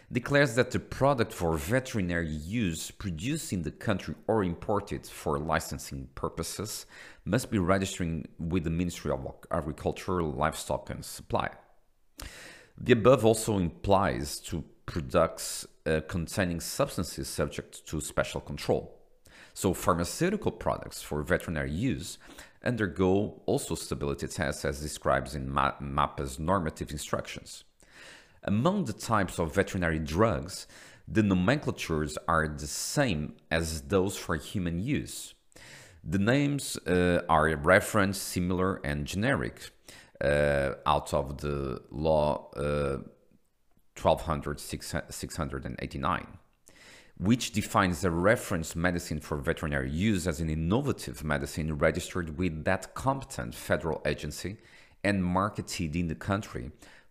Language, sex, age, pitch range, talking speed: English, male, 40-59, 75-100 Hz, 115 wpm